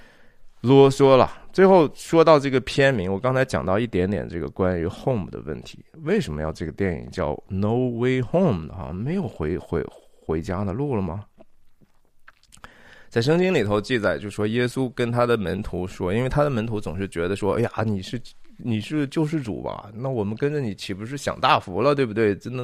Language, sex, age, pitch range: Chinese, male, 20-39, 105-145 Hz